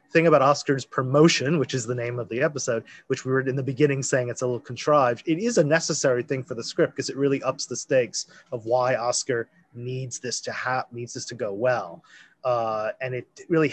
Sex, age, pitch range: male, 30-49, 125-155 Hz